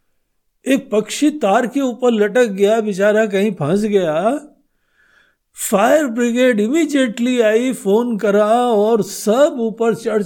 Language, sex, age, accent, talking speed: Hindi, male, 50-69, native, 125 wpm